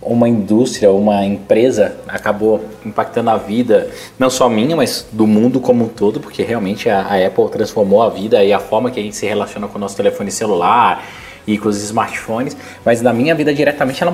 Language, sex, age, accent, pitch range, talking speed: Portuguese, male, 20-39, Brazilian, 120-165 Hz, 205 wpm